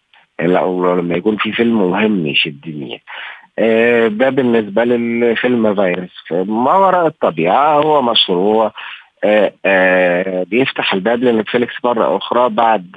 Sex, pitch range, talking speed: male, 90-120 Hz, 125 wpm